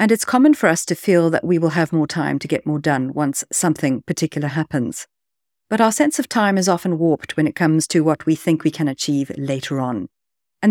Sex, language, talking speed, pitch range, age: female, English, 235 wpm, 155-210 Hz, 50-69